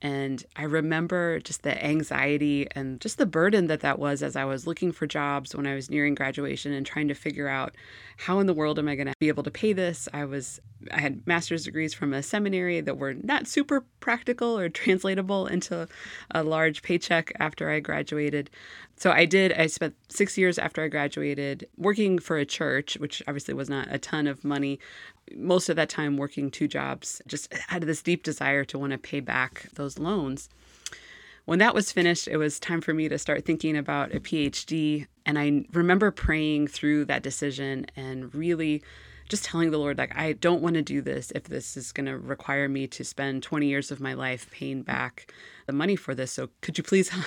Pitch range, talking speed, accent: 140-170 Hz, 210 wpm, American